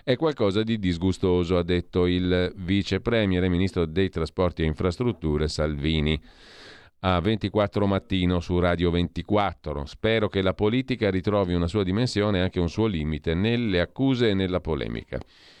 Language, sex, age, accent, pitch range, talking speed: Italian, male, 40-59, native, 85-105 Hz, 145 wpm